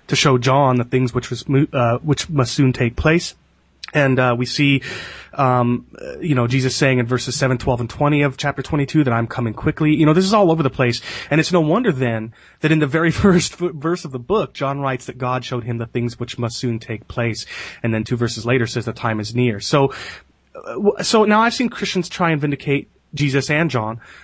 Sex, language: male, English